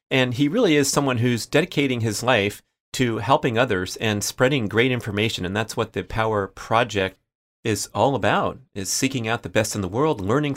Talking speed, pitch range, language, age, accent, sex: 195 wpm, 100-120 Hz, English, 30-49, American, male